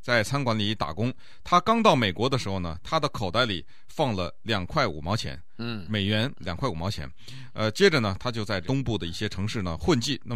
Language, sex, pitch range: Chinese, male, 100-140 Hz